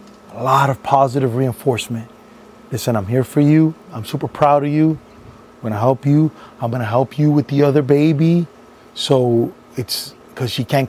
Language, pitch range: English, 125-160 Hz